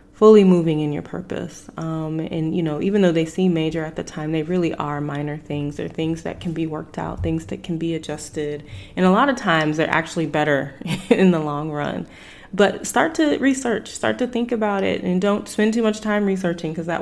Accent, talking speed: American, 225 wpm